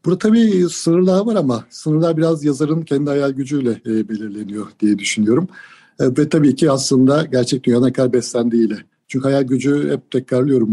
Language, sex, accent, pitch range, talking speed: Turkish, male, native, 115-130 Hz, 150 wpm